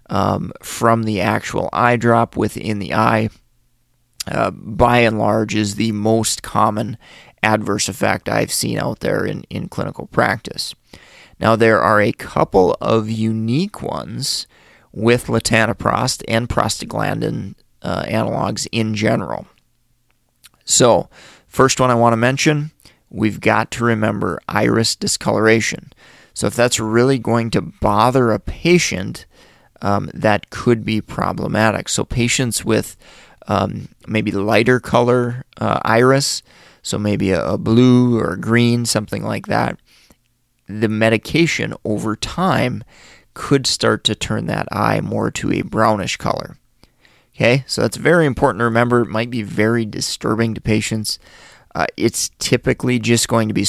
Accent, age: American, 30-49